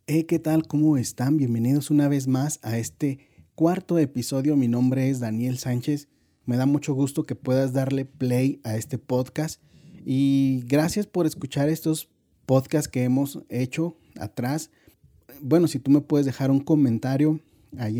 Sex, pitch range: male, 120-150 Hz